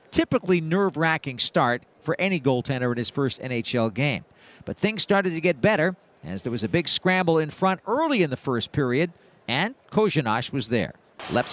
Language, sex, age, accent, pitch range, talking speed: English, male, 50-69, American, 160-245 Hz, 180 wpm